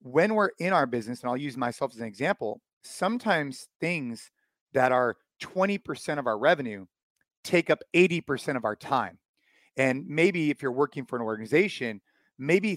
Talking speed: 165 wpm